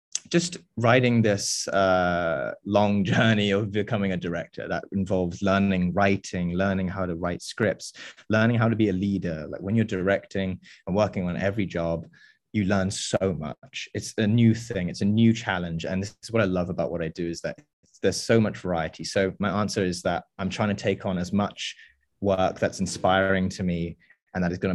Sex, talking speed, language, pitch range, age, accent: male, 200 wpm, French, 90-110 Hz, 20-39, British